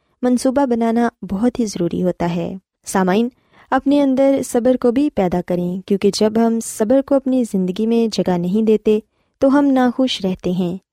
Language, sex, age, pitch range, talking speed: Urdu, female, 20-39, 190-260 Hz, 170 wpm